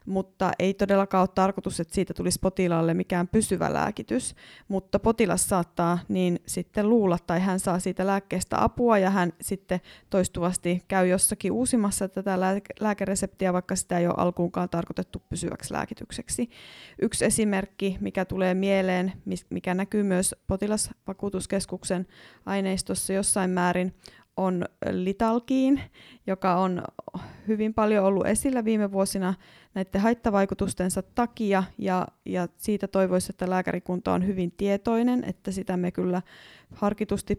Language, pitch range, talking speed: Finnish, 180-195 Hz, 125 wpm